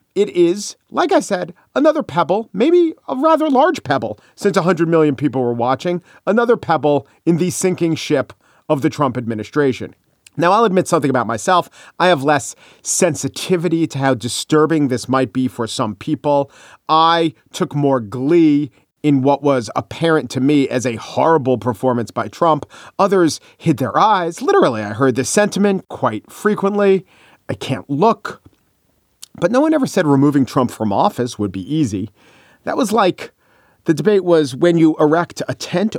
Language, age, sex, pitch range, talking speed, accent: English, 40-59, male, 130-180 Hz, 165 wpm, American